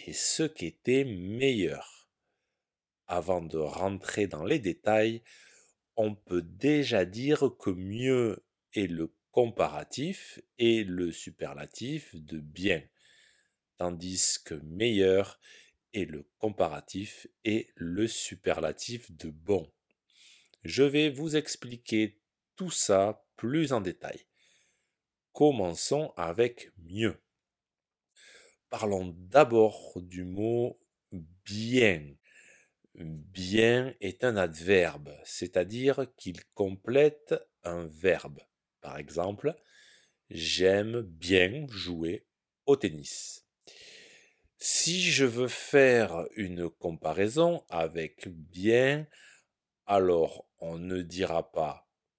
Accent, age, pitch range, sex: French, 40-59, 90-125 Hz, male